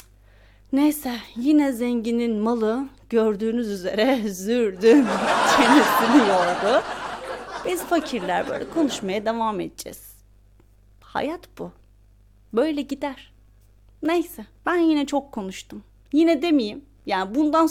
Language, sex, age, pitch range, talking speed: Turkish, female, 30-49, 230-320 Hz, 90 wpm